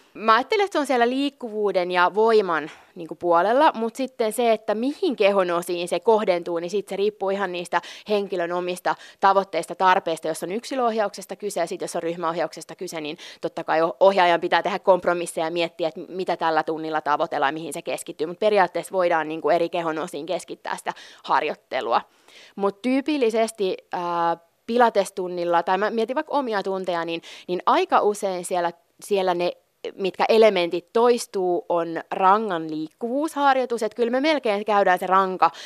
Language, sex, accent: Finnish, female, native